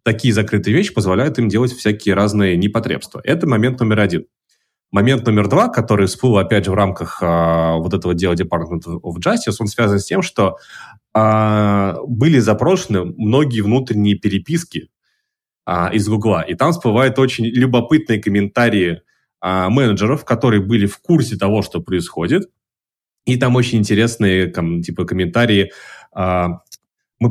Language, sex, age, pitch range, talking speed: English, male, 30-49, 90-115 Hz, 145 wpm